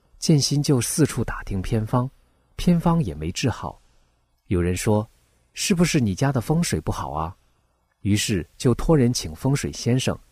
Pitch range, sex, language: 85-130 Hz, male, Chinese